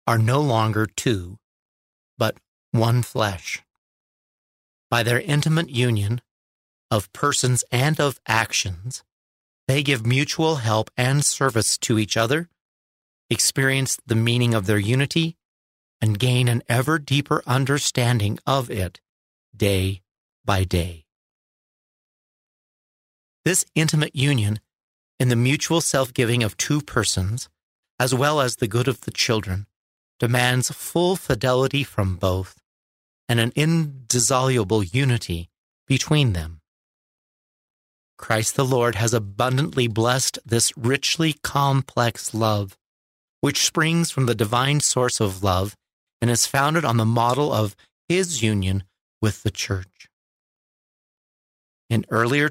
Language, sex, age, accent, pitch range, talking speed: English, male, 40-59, American, 100-135 Hz, 120 wpm